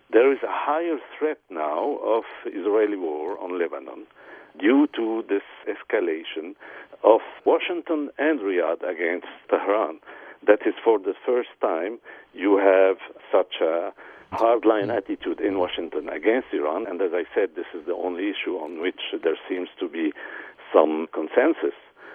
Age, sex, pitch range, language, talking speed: 50-69, male, 325-450 Hz, English, 145 wpm